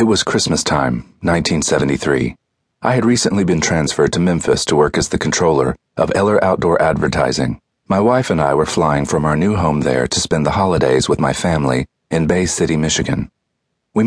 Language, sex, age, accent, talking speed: English, male, 40-59, American, 190 wpm